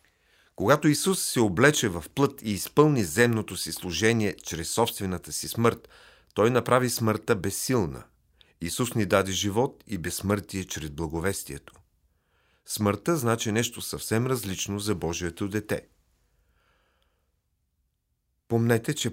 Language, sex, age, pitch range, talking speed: Bulgarian, male, 40-59, 100-125 Hz, 115 wpm